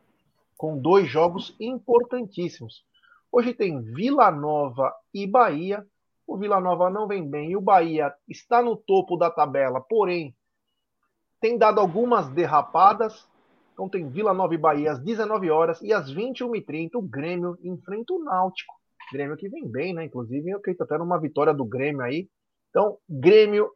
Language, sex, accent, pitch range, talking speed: Portuguese, male, Brazilian, 155-235 Hz, 155 wpm